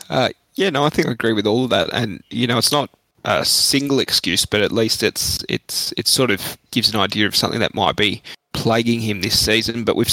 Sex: male